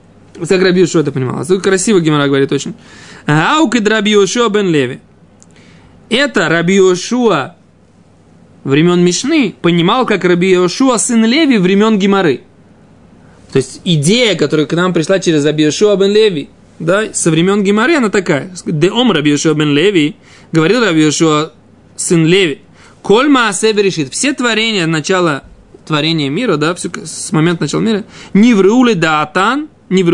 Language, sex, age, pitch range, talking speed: Russian, male, 20-39, 155-210 Hz, 130 wpm